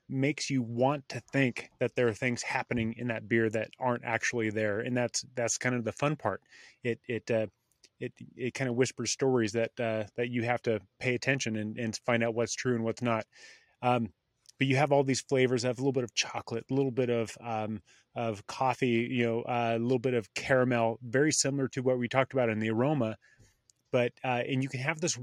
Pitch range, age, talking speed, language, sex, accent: 115-130 Hz, 30-49, 230 wpm, English, male, American